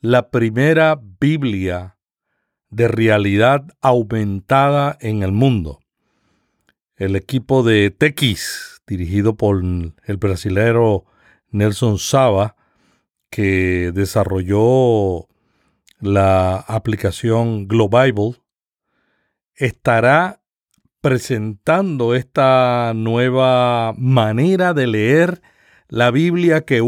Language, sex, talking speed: Spanish, male, 75 wpm